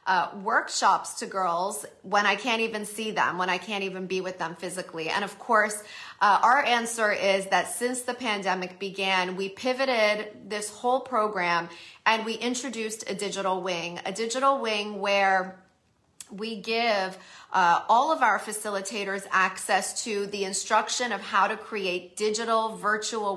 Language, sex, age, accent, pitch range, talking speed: English, female, 30-49, American, 185-225 Hz, 160 wpm